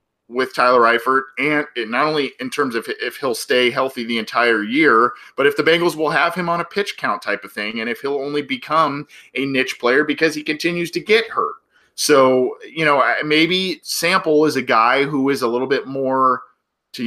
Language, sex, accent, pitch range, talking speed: English, male, American, 120-155 Hz, 205 wpm